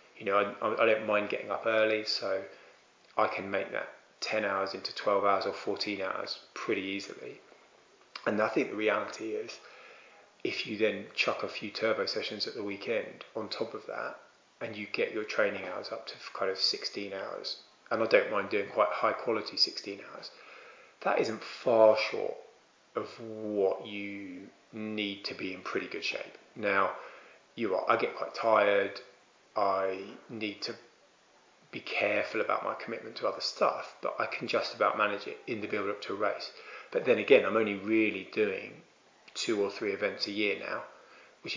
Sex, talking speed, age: male, 185 wpm, 20-39